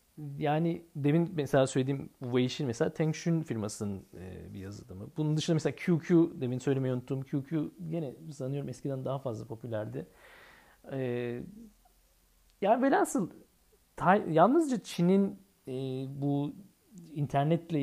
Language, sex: Turkish, male